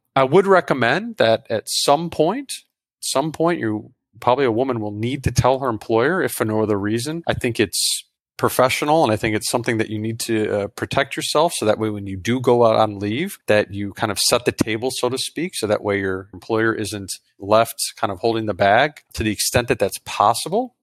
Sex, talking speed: male, 225 wpm